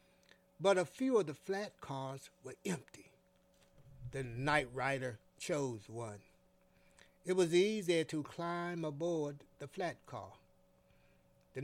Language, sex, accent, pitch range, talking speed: English, male, American, 135-180 Hz, 125 wpm